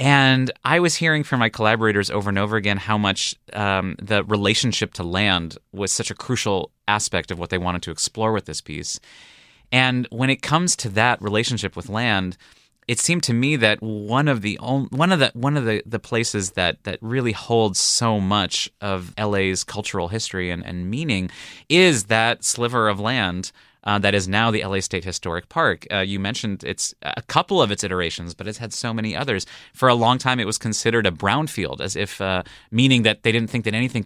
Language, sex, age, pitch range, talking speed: English, male, 20-39, 95-120 Hz, 210 wpm